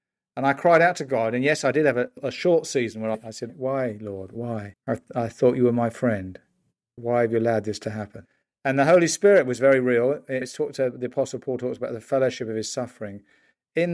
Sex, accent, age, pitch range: male, British, 50-69, 110-135 Hz